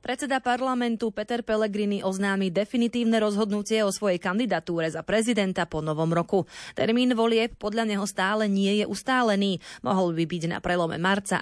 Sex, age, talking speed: female, 30-49, 155 wpm